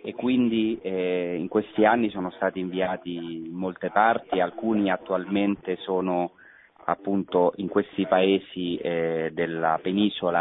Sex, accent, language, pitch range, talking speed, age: male, native, Italian, 90-105 Hz, 125 wpm, 40-59